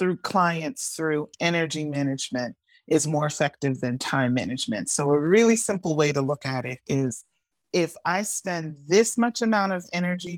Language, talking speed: English, 170 wpm